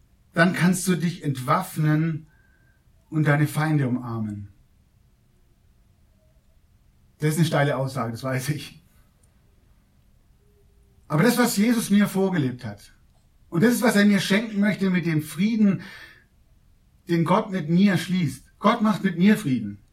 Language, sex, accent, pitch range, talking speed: German, male, German, 130-175 Hz, 135 wpm